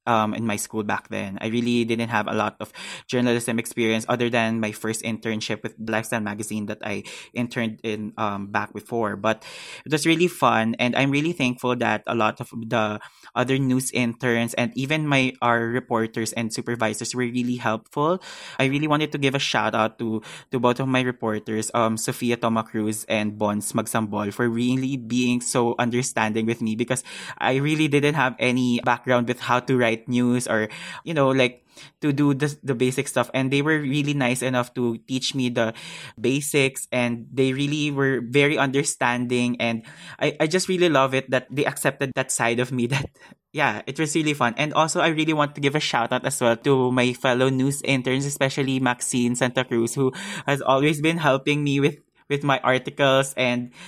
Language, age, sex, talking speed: English, 20-39, male, 195 wpm